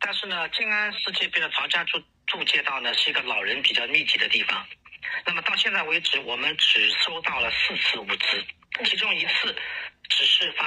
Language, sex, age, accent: Chinese, male, 40-59, native